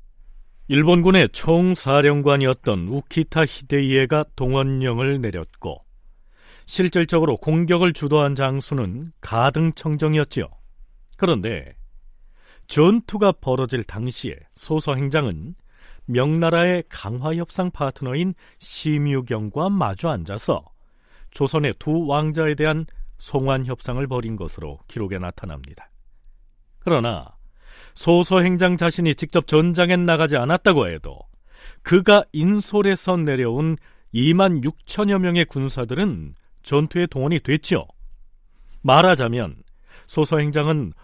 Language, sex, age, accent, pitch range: Korean, male, 40-59, native, 125-165 Hz